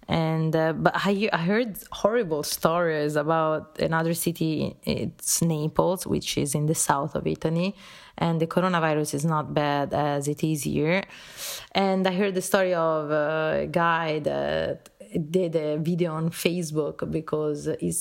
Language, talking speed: English, 150 wpm